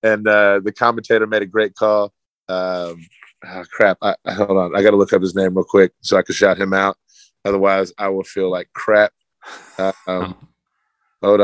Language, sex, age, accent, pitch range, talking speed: English, male, 20-39, American, 95-110 Hz, 205 wpm